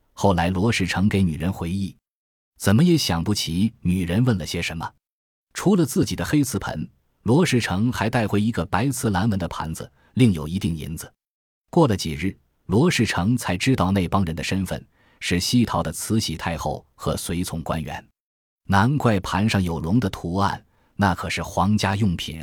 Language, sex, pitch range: Chinese, male, 85-110 Hz